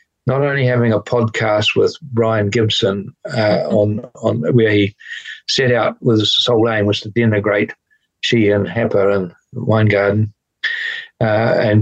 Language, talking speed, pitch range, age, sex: English, 150 wpm, 105-130 Hz, 60-79, male